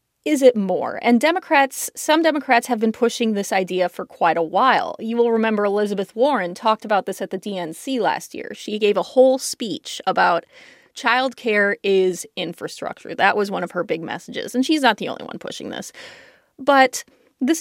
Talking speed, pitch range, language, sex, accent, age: 190 wpm, 200-270 Hz, English, female, American, 30-49